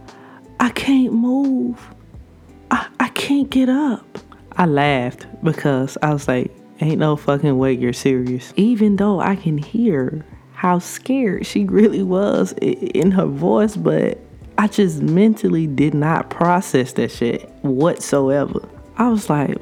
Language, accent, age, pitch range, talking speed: English, American, 20-39, 135-200 Hz, 140 wpm